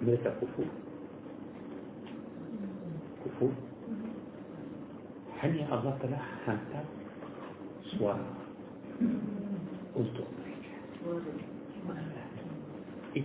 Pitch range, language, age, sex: 110-155 Hz, Malay, 60-79, male